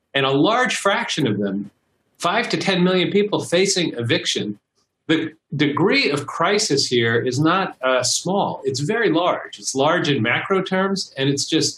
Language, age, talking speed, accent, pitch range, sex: English, 40-59, 170 wpm, American, 130-180 Hz, male